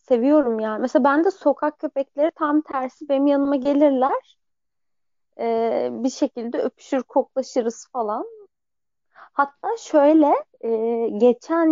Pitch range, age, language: 235-315 Hz, 30-49, Turkish